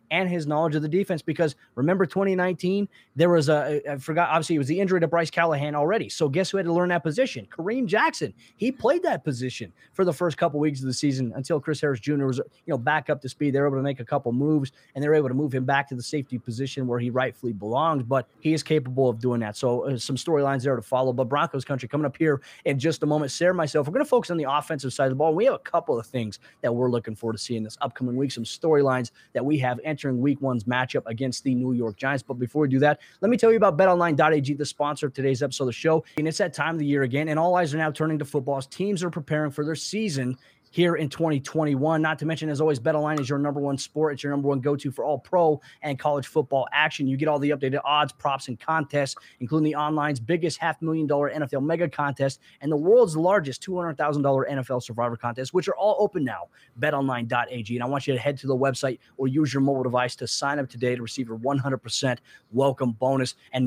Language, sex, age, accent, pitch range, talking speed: English, male, 20-39, American, 130-155 Hz, 250 wpm